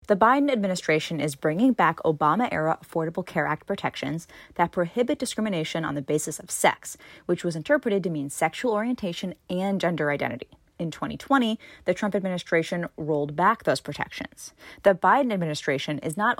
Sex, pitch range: female, 155-210 Hz